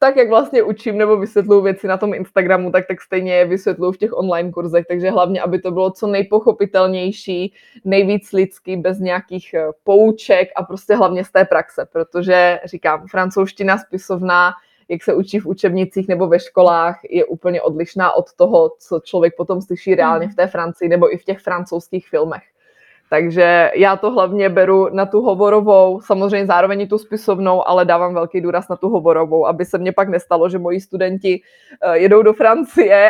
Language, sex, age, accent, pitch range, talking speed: Czech, female, 20-39, native, 180-205 Hz, 180 wpm